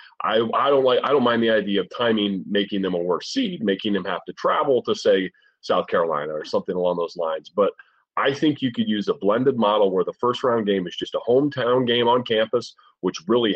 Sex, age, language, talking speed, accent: male, 30-49, English, 235 wpm, American